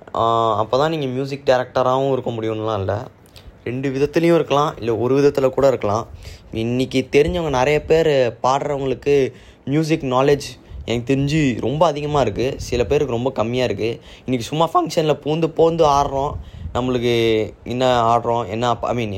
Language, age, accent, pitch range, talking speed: Tamil, 20-39, native, 110-135 Hz, 140 wpm